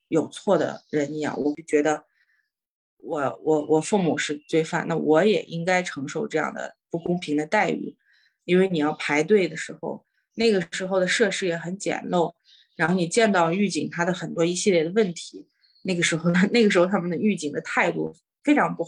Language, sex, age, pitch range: Chinese, female, 20-39, 160-210 Hz